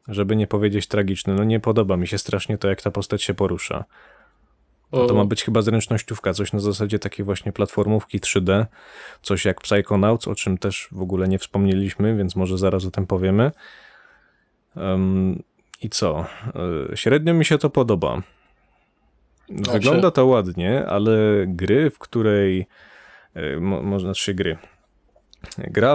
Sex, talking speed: male, 155 wpm